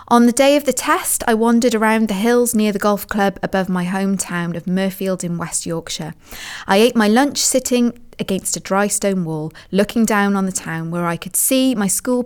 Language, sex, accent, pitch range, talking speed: English, female, British, 175-235 Hz, 215 wpm